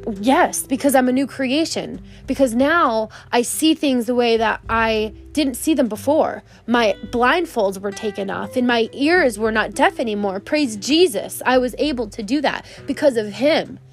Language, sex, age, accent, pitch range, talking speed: English, female, 20-39, American, 225-270 Hz, 180 wpm